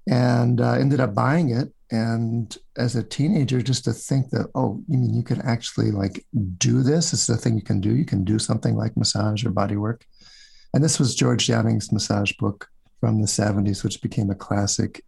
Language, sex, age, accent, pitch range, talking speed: English, male, 50-69, American, 105-120 Hz, 205 wpm